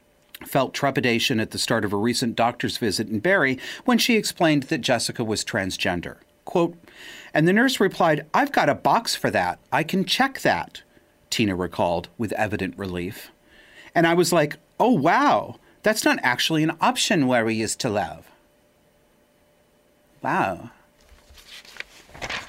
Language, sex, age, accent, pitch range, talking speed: English, male, 40-59, American, 115-175 Hz, 150 wpm